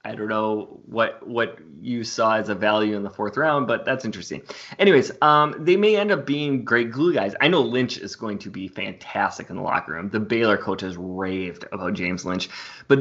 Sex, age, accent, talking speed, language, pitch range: male, 20-39, American, 220 wpm, English, 100-120 Hz